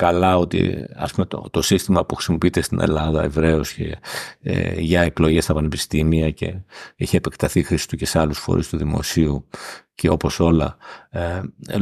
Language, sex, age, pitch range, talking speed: Greek, male, 60-79, 85-115 Hz, 175 wpm